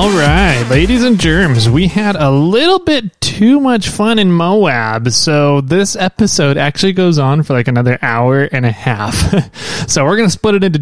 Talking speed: 190 wpm